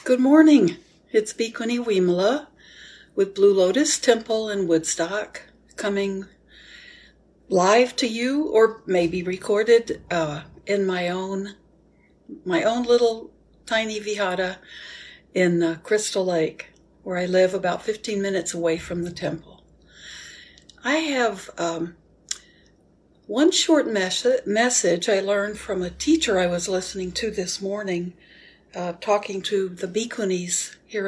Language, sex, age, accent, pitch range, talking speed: English, female, 60-79, American, 180-230 Hz, 125 wpm